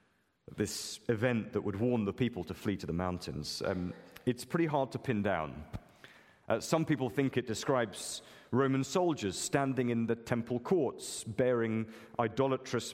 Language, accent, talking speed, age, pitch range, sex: English, British, 160 wpm, 40-59, 95-125 Hz, male